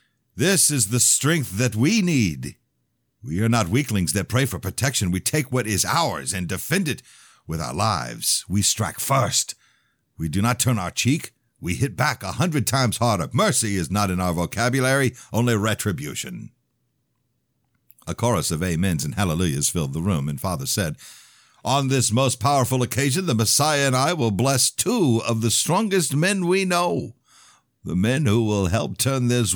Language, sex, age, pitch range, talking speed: English, male, 60-79, 90-130 Hz, 175 wpm